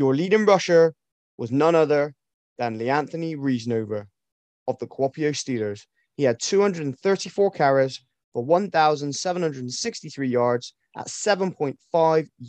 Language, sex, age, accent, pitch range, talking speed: English, male, 20-39, British, 130-185 Hz, 105 wpm